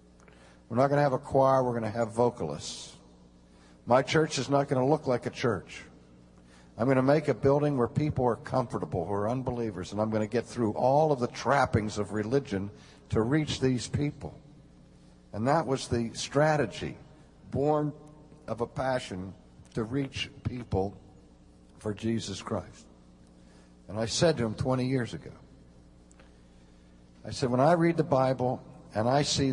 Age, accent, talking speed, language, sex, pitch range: 60-79, American, 170 wpm, English, male, 100-135 Hz